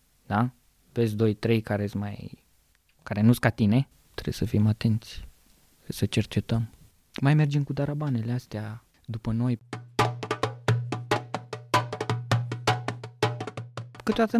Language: Romanian